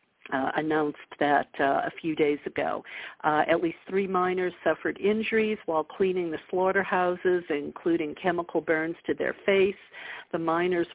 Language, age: English, 50-69